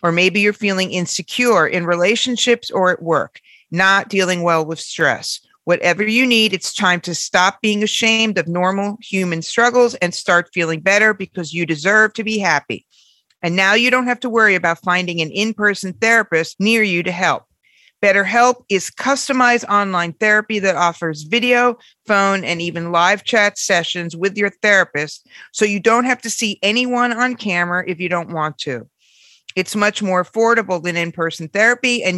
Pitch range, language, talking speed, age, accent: 180-235 Hz, English, 175 wpm, 50-69, American